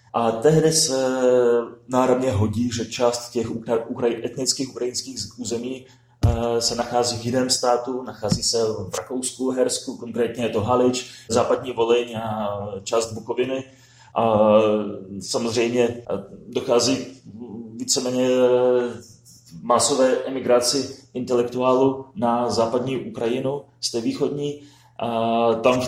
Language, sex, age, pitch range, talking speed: Czech, male, 30-49, 110-125 Hz, 110 wpm